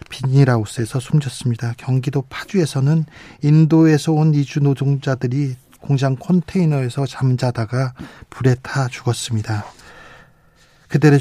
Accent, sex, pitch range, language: native, male, 125-150 Hz, Korean